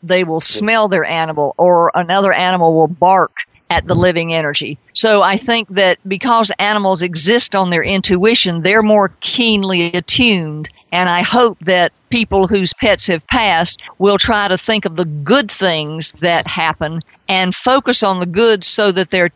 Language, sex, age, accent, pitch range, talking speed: English, female, 50-69, American, 170-205 Hz, 170 wpm